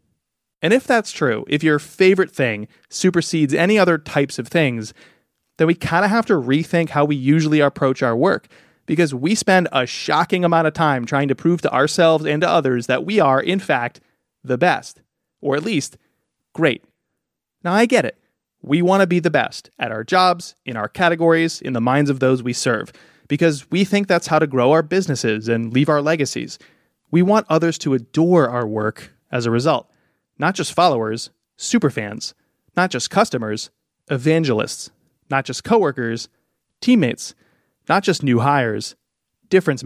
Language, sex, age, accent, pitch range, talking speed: English, male, 30-49, American, 130-175 Hz, 175 wpm